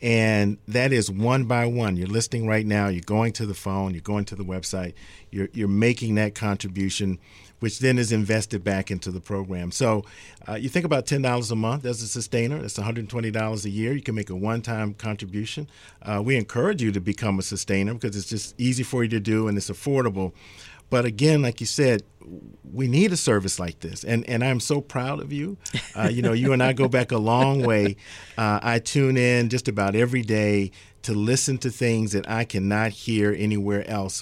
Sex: male